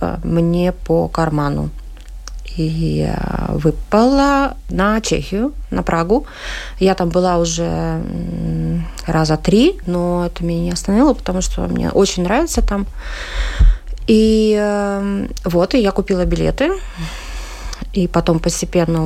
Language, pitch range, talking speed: Russian, 160-200 Hz, 115 wpm